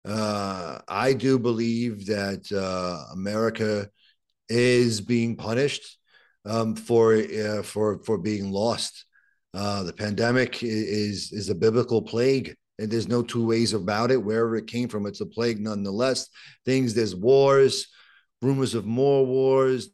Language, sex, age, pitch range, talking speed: English, male, 40-59, 110-145 Hz, 140 wpm